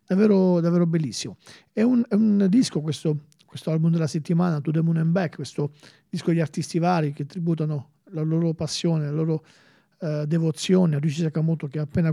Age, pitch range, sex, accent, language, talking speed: 40-59, 155-175 Hz, male, native, Italian, 190 wpm